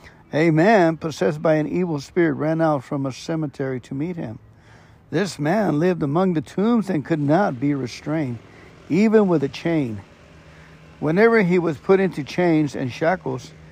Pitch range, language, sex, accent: 130-175 Hz, English, male, American